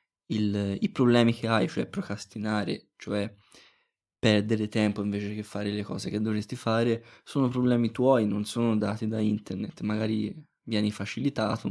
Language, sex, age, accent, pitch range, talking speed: Italian, male, 20-39, native, 105-125 Hz, 150 wpm